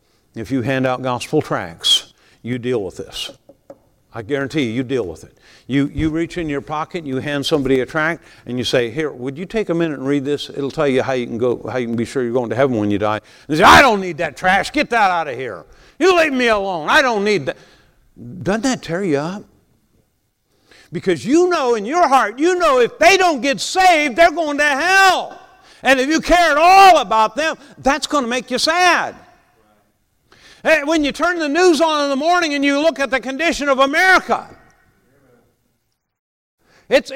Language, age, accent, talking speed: English, 60-79, American, 215 wpm